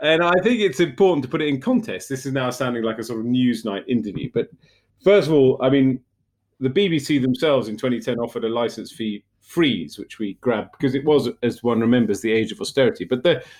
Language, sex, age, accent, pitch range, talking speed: English, male, 40-59, British, 115-160 Hz, 230 wpm